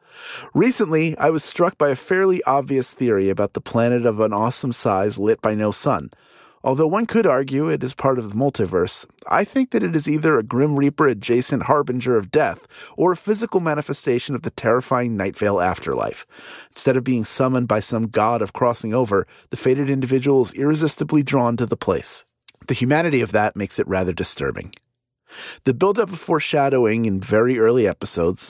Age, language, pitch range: 30-49, English, 110-145 Hz